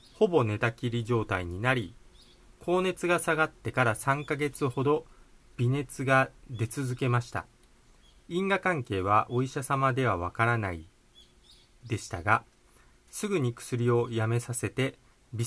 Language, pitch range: Japanese, 110-155 Hz